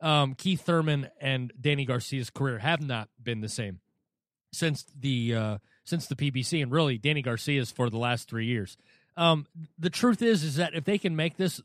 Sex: male